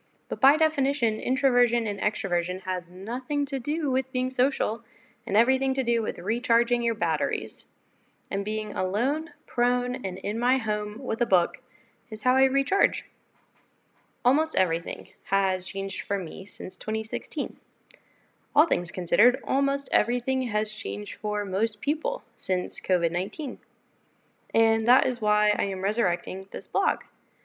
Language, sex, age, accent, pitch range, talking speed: English, female, 10-29, American, 190-255 Hz, 140 wpm